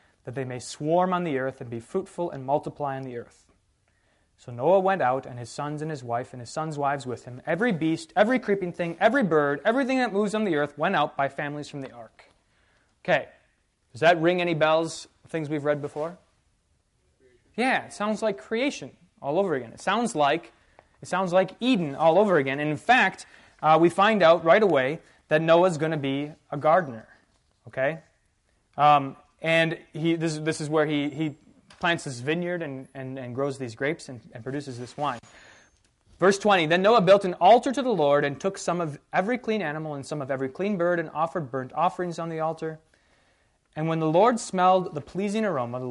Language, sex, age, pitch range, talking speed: English, male, 20-39, 135-180 Hz, 210 wpm